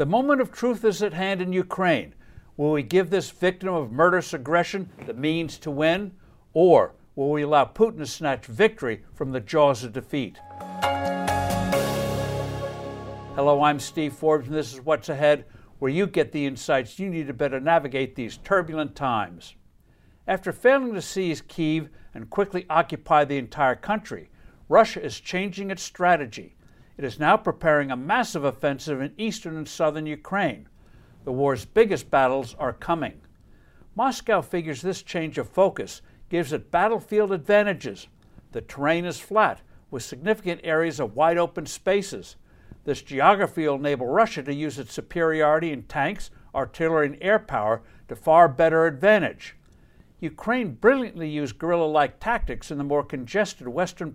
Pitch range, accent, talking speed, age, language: 140-180 Hz, American, 155 wpm, 60-79, English